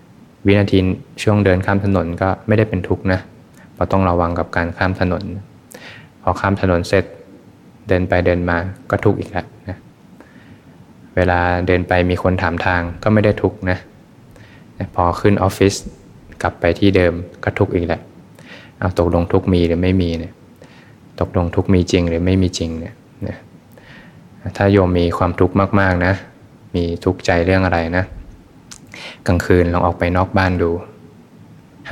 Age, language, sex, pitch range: 20-39, Thai, male, 90-100 Hz